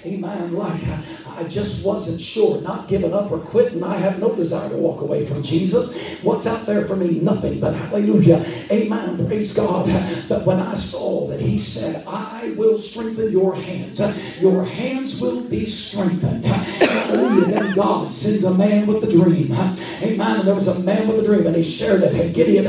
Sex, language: male, English